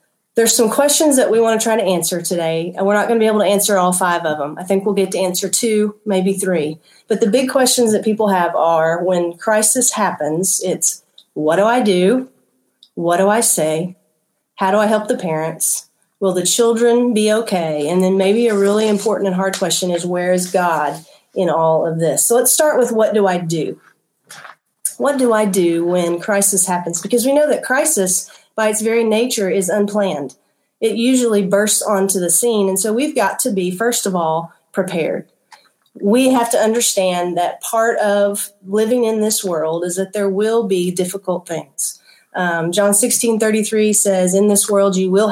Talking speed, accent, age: 200 wpm, American, 40-59